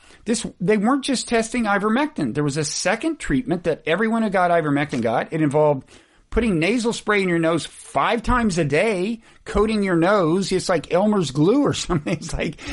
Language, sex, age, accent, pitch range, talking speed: English, male, 50-69, American, 140-200 Hz, 190 wpm